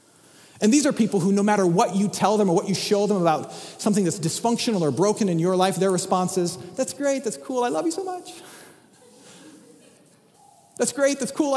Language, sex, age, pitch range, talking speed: English, male, 40-59, 165-235 Hz, 215 wpm